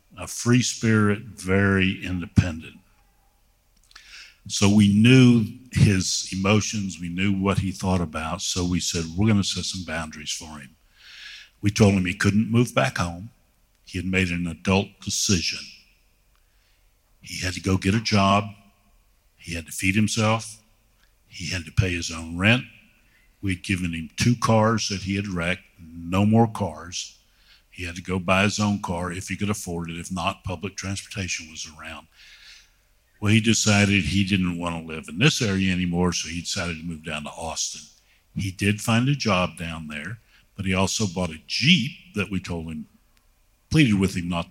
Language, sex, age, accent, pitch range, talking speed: English, male, 60-79, American, 90-105 Hz, 175 wpm